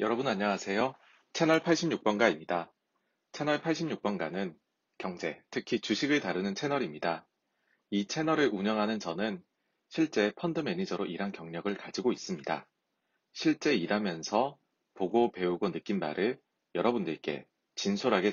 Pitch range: 100-150 Hz